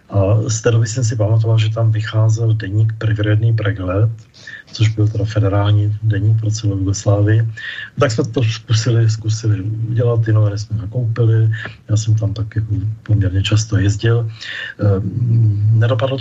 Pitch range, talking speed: 105-115 Hz, 145 wpm